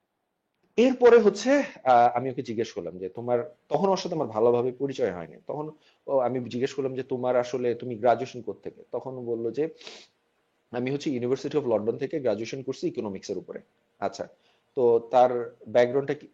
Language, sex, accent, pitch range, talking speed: Bengali, male, native, 120-170 Hz, 50 wpm